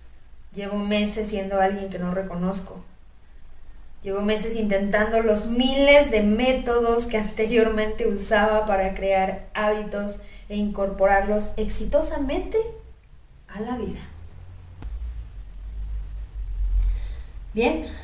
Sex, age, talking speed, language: female, 20-39, 90 wpm, Spanish